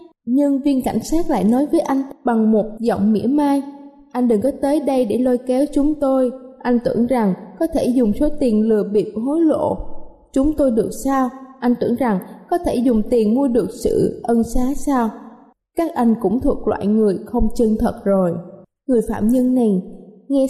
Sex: female